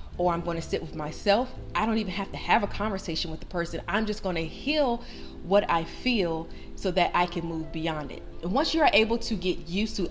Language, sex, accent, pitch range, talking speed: English, female, American, 170-215 Hz, 250 wpm